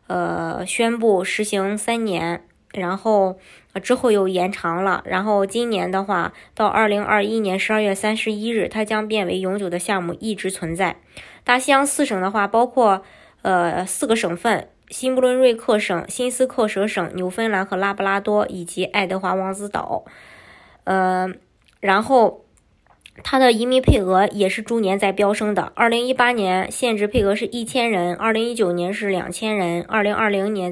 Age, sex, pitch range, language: 20-39, male, 185-225 Hz, Chinese